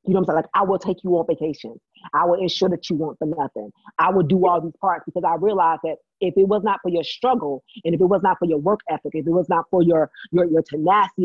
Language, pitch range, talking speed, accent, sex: English, 170-230 Hz, 295 wpm, American, female